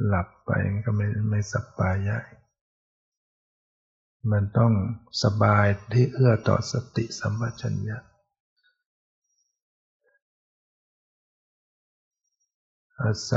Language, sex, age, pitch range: Thai, male, 60-79, 100-115 Hz